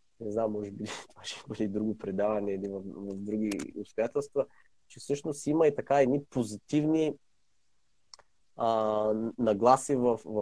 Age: 20-39